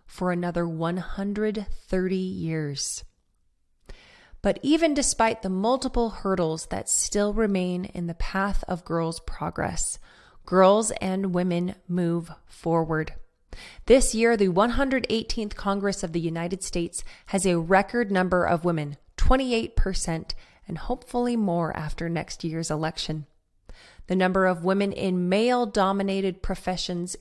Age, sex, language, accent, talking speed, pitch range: 20-39, female, English, American, 120 wpm, 170-210 Hz